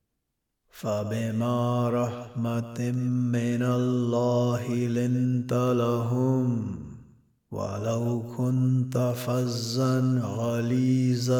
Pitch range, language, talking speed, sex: 120-125 Hz, Arabic, 55 wpm, male